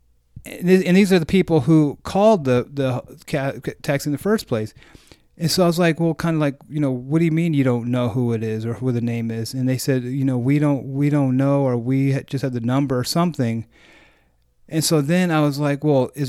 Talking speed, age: 245 wpm, 30-49